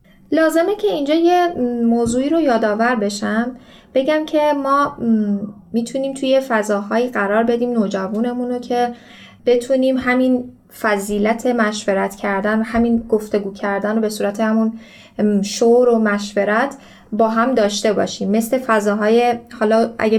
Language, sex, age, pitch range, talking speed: Persian, female, 10-29, 210-245 Hz, 125 wpm